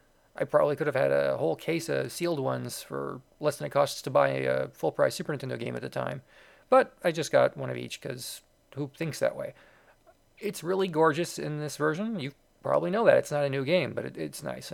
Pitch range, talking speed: 135-165 Hz, 230 wpm